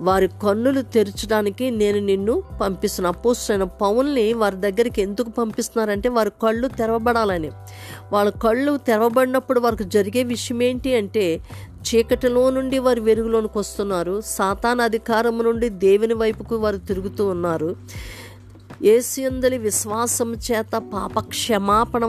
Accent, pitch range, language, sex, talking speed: native, 195-240 Hz, Telugu, female, 110 wpm